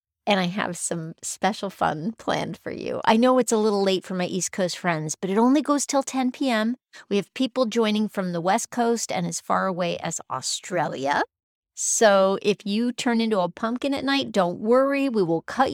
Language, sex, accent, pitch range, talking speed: English, female, American, 175-230 Hz, 210 wpm